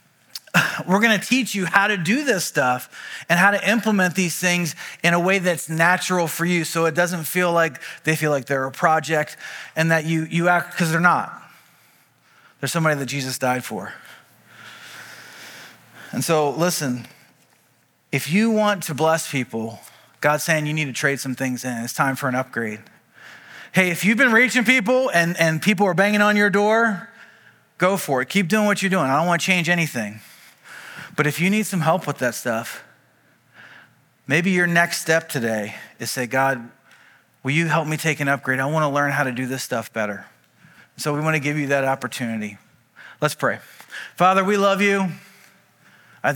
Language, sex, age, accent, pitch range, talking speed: English, male, 30-49, American, 135-180 Hz, 190 wpm